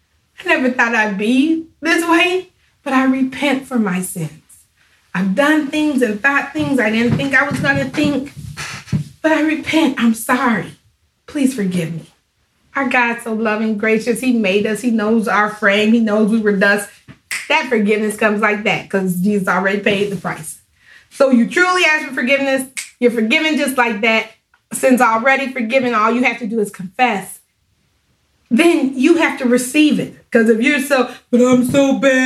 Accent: American